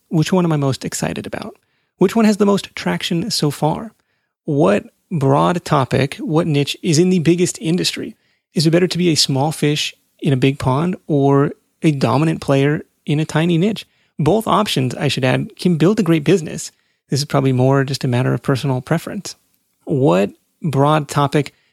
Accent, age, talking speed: American, 30-49, 190 wpm